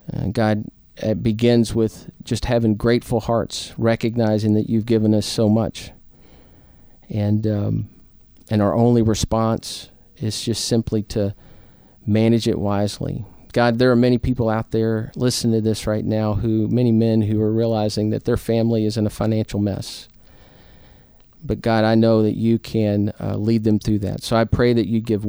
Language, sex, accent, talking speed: English, male, American, 175 wpm